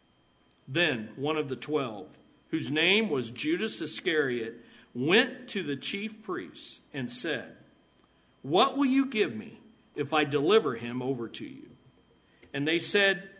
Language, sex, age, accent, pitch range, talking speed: English, male, 50-69, American, 130-180 Hz, 145 wpm